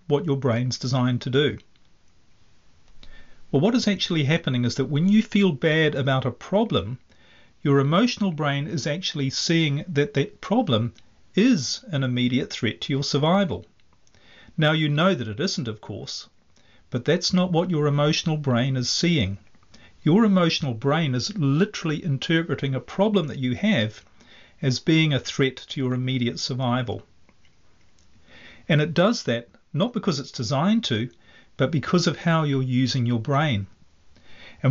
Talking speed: 155 wpm